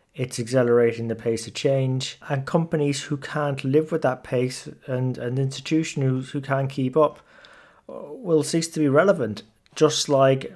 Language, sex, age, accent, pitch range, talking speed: English, male, 30-49, British, 125-145 Hz, 165 wpm